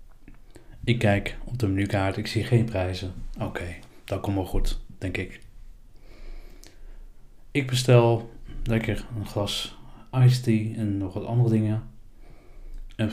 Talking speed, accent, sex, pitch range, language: 135 wpm, Dutch, male, 95-120 Hz, Dutch